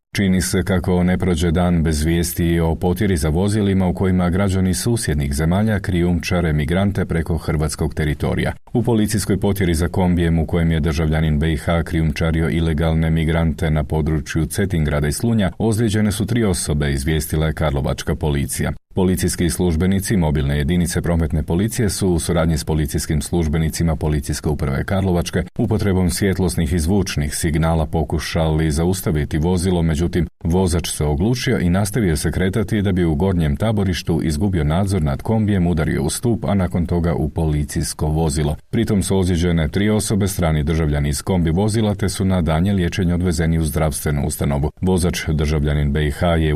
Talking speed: 155 wpm